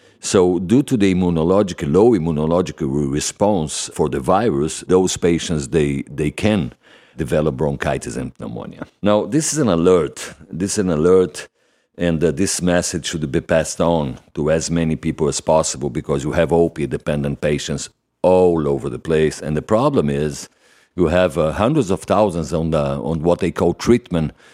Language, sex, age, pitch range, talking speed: English, male, 50-69, 75-90 Hz, 170 wpm